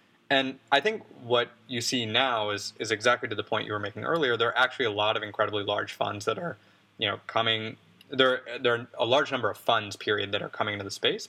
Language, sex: English, male